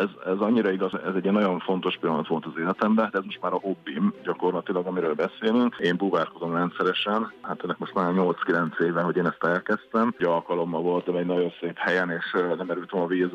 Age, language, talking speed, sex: 50-69, Hungarian, 210 wpm, male